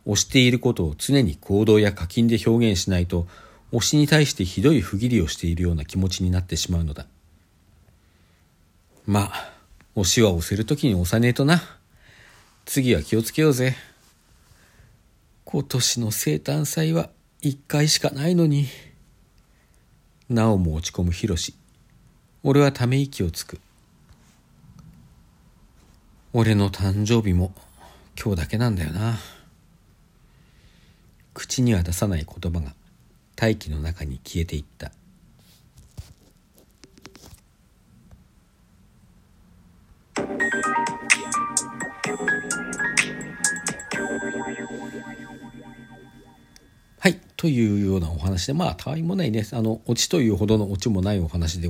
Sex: male